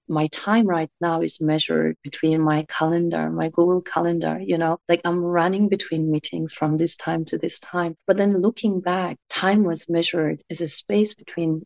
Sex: female